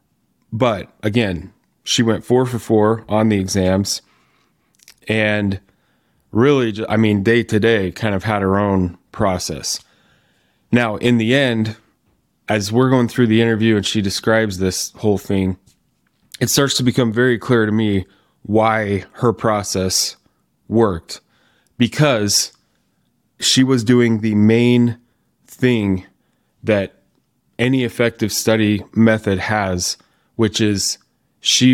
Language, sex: English, male